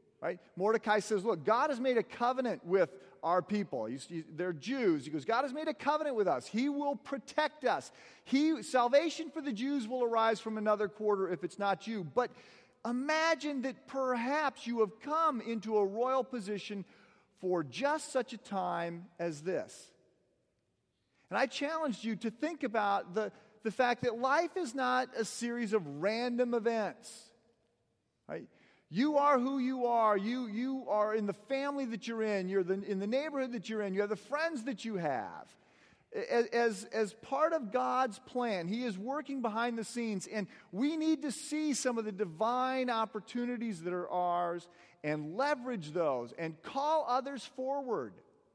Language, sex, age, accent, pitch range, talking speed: English, male, 40-59, American, 200-265 Hz, 170 wpm